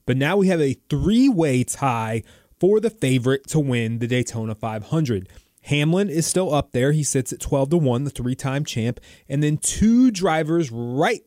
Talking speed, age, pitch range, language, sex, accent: 175 wpm, 30-49, 125-165 Hz, English, male, American